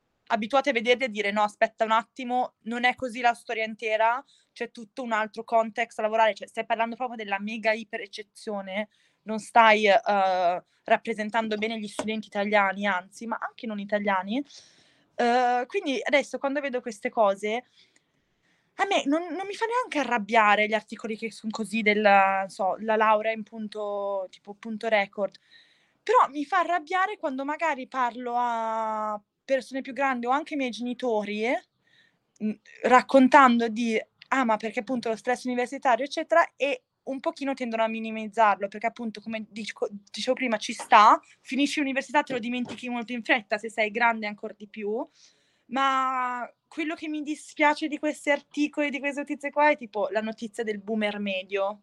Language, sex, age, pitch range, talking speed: Italian, female, 20-39, 215-270 Hz, 170 wpm